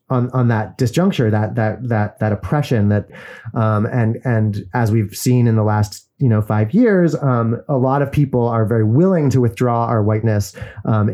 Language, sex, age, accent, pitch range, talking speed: English, male, 30-49, American, 110-140 Hz, 195 wpm